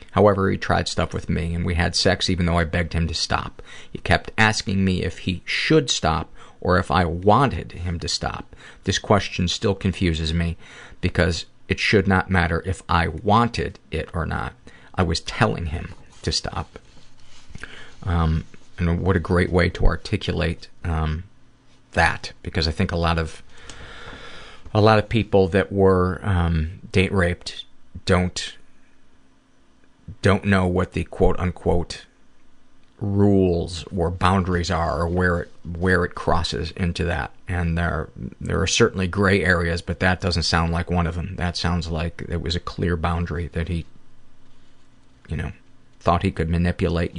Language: English